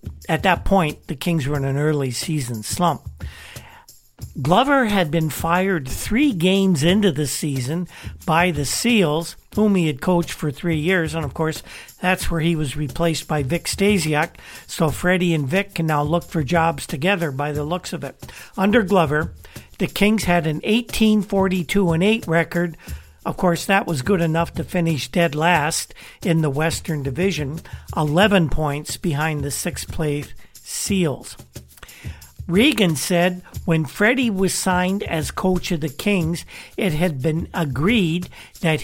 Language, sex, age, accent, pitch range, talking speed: English, male, 50-69, American, 155-190 Hz, 155 wpm